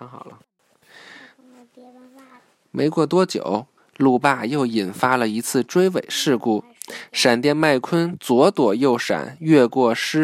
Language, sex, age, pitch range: Chinese, male, 20-39, 125-185 Hz